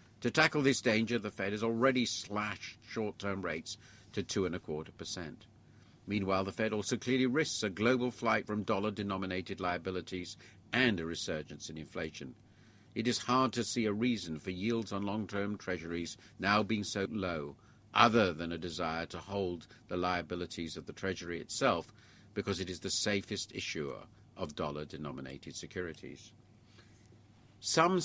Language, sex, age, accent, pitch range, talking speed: English, male, 50-69, British, 90-110 Hz, 145 wpm